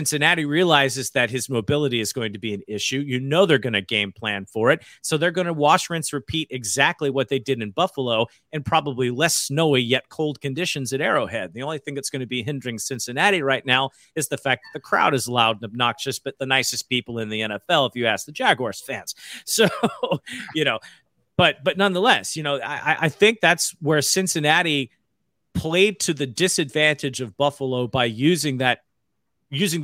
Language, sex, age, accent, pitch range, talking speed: English, male, 40-59, American, 120-145 Hz, 200 wpm